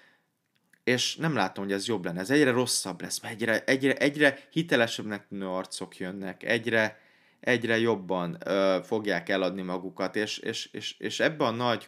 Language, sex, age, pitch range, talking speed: Hungarian, male, 20-39, 95-120 Hz, 165 wpm